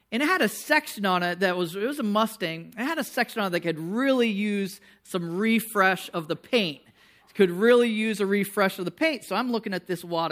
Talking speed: 250 wpm